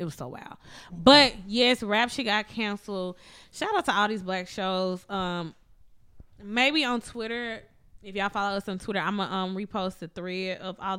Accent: American